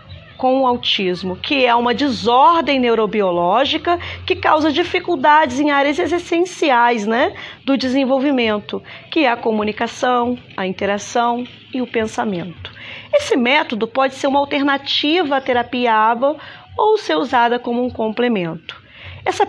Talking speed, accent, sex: 130 wpm, Brazilian, female